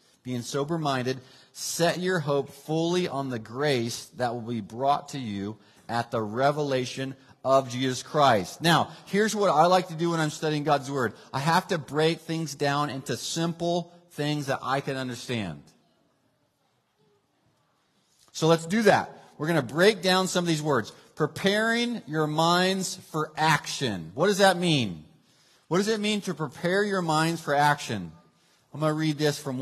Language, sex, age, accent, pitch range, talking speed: English, male, 40-59, American, 130-170 Hz, 170 wpm